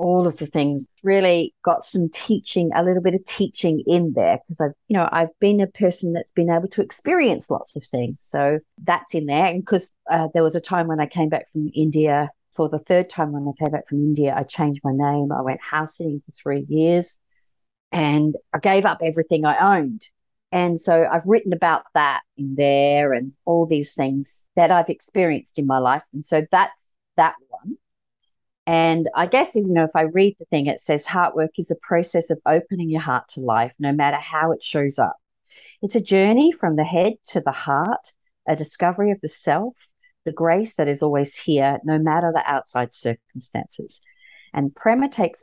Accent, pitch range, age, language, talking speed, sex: Australian, 145-185 Hz, 50-69, English, 205 wpm, female